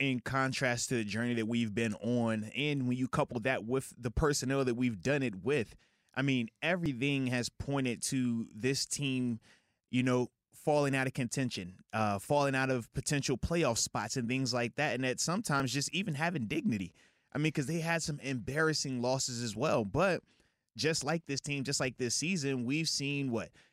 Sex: male